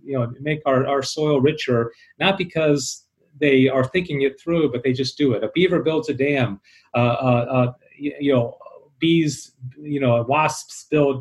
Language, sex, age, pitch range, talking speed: English, male, 40-59, 135-170 Hz, 185 wpm